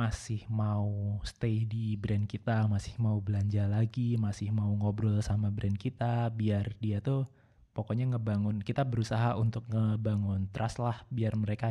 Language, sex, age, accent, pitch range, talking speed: Indonesian, male, 20-39, native, 105-120 Hz, 150 wpm